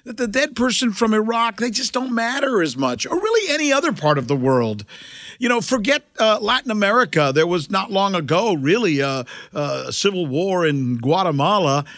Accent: American